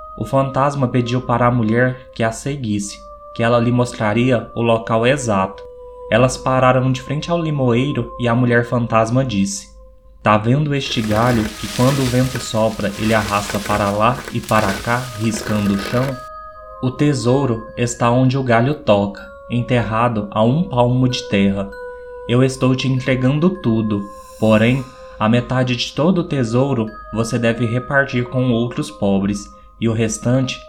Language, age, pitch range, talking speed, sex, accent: Portuguese, 20-39, 110-135 Hz, 155 wpm, male, Brazilian